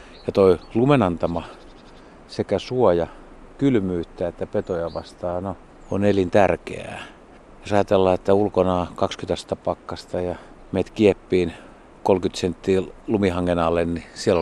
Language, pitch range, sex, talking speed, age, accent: Finnish, 85-100 Hz, male, 110 wpm, 50-69, native